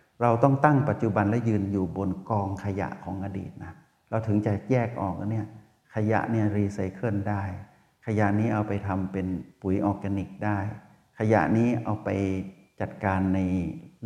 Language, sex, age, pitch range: Thai, male, 60-79, 100-130 Hz